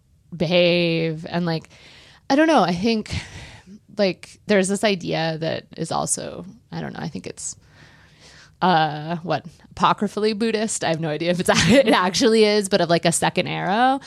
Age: 20-39